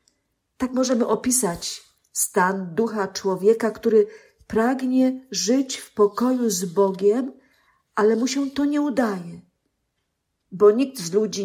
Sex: female